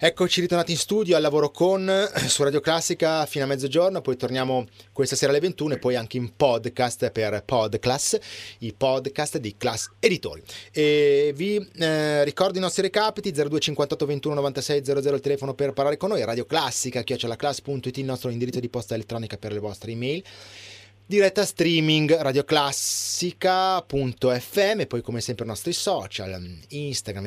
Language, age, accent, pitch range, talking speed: Italian, 30-49, native, 115-165 Hz, 155 wpm